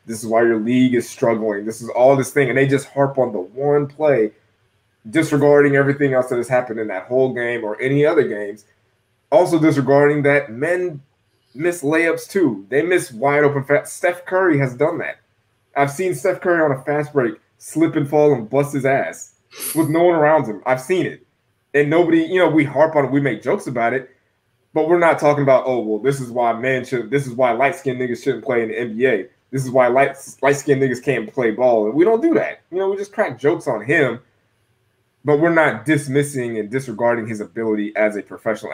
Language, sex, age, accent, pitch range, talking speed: English, male, 20-39, American, 115-150 Hz, 220 wpm